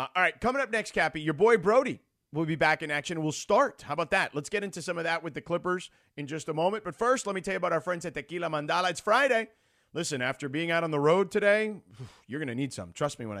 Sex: male